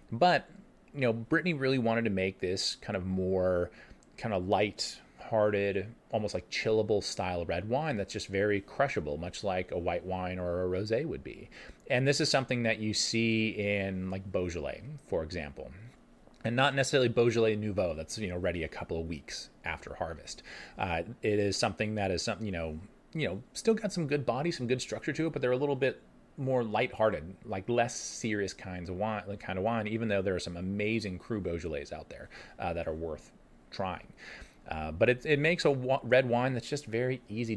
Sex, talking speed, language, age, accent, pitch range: male, 205 wpm, English, 30-49, American, 95-130 Hz